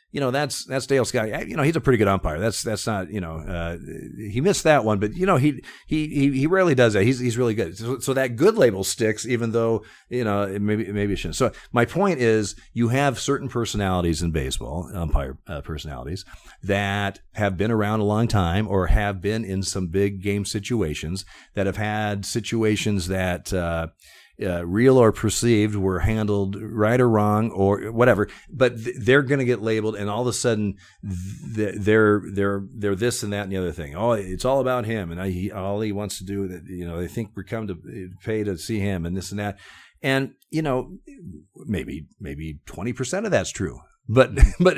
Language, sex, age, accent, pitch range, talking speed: English, male, 40-59, American, 95-120 Hz, 215 wpm